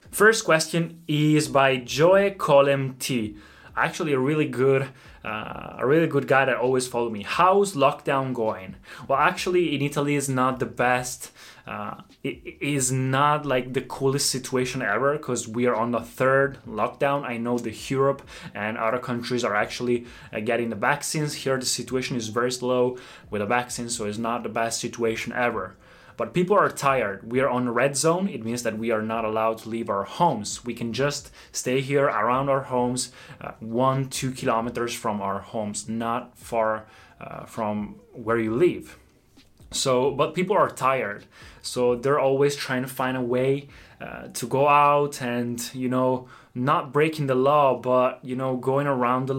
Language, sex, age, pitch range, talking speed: Italian, male, 20-39, 120-140 Hz, 180 wpm